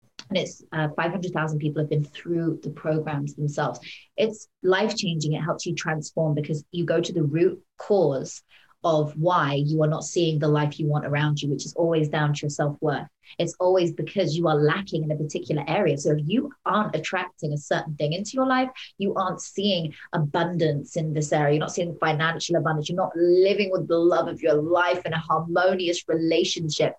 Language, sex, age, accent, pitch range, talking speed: English, female, 30-49, British, 150-180 Hz, 200 wpm